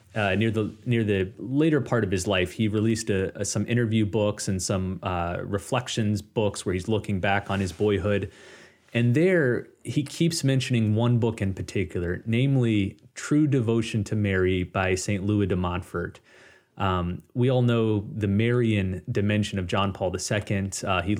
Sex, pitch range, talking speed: male, 100-120 Hz, 175 wpm